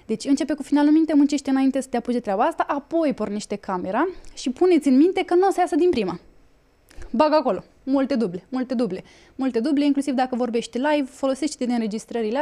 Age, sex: 20-39, female